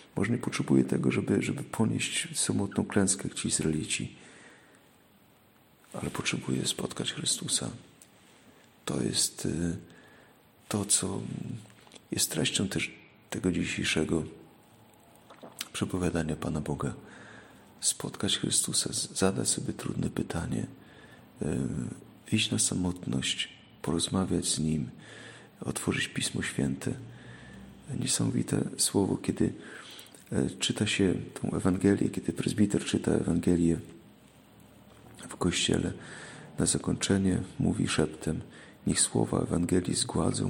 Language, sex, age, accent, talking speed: Polish, male, 40-59, native, 95 wpm